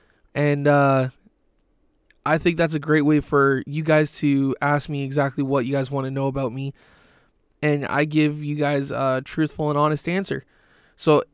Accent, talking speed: American, 180 wpm